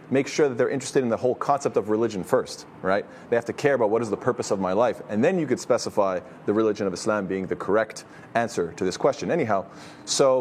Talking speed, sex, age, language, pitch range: 250 wpm, male, 30-49, English, 110-145 Hz